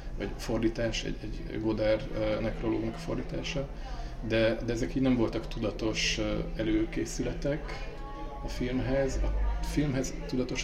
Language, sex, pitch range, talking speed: Hungarian, male, 110-125 Hz, 120 wpm